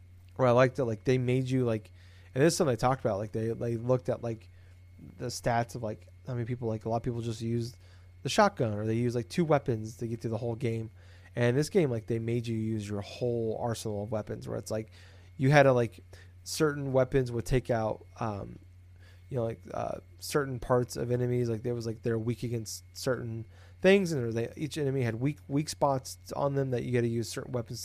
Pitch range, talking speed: 105-130 Hz, 235 wpm